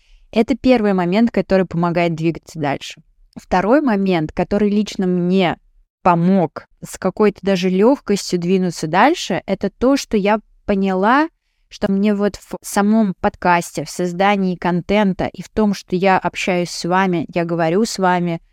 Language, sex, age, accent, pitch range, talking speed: Russian, female, 20-39, native, 175-210 Hz, 145 wpm